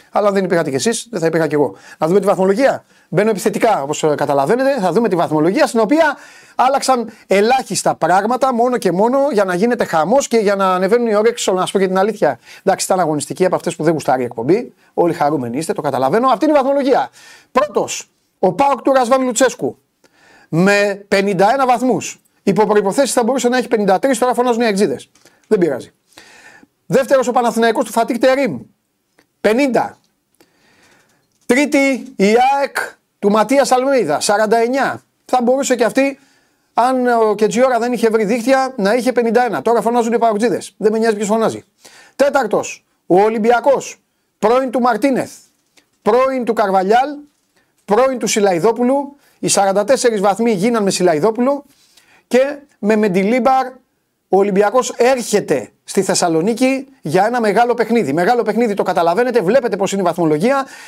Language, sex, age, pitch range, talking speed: Greek, male, 30-49, 195-260 Hz, 155 wpm